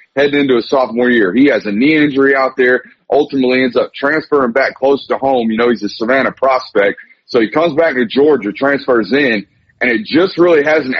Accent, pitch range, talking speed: American, 120-145 Hz, 215 wpm